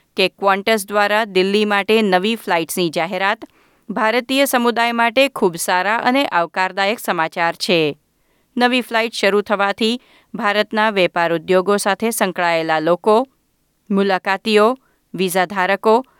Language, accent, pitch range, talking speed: Gujarati, native, 190-245 Hz, 105 wpm